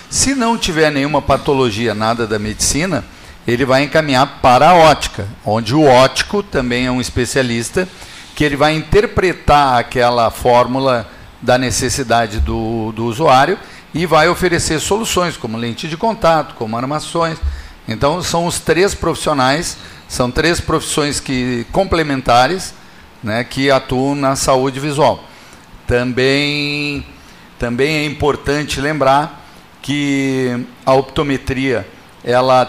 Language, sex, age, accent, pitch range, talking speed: Portuguese, male, 50-69, Brazilian, 115-145 Hz, 120 wpm